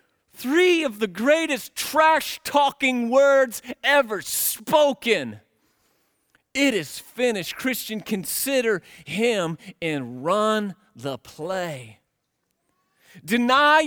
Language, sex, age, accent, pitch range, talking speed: English, male, 40-59, American, 170-280 Hz, 80 wpm